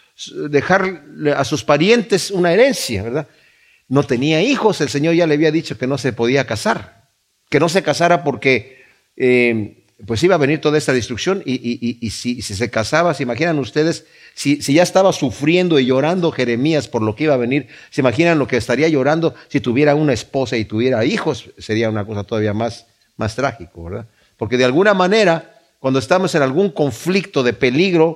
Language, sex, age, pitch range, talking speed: Spanish, male, 50-69, 120-160 Hz, 190 wpm